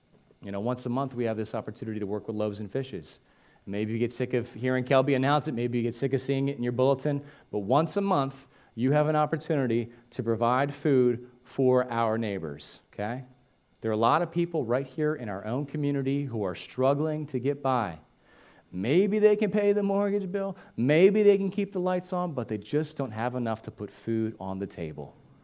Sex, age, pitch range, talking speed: male, 40-59, 115-160 Hz, 220 wpm